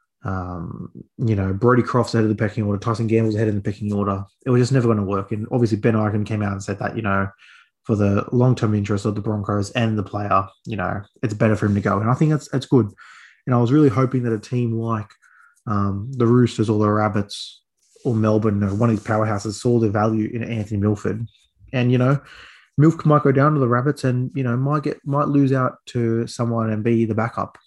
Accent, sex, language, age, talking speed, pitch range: Australian, male, English, 20-39, 245 wpm, 110-125 Hz